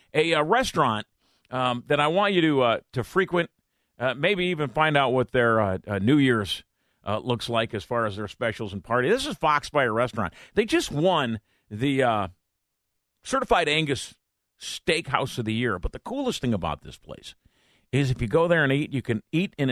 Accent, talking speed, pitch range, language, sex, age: American, 200 wpm, 105-155 Hz, English, male, 50-69